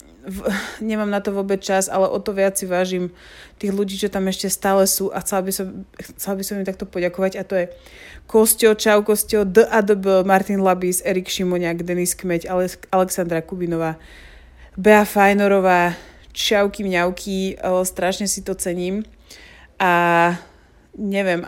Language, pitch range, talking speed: Slovak, 170-195 Hz, 155 wpm